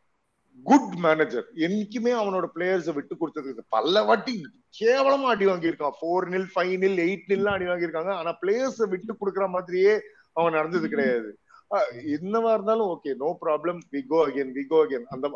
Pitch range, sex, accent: 165-220 Hz, male, native